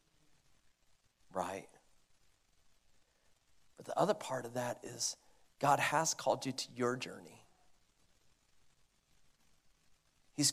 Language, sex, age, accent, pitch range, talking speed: English, male, 40-59, American, 125-150 Hz, 90 wpm